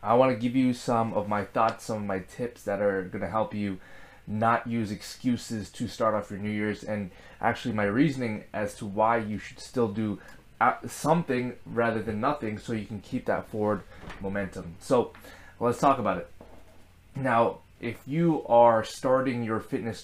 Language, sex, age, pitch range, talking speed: English, male, 20-39, 100-120 Hz, 185 wpm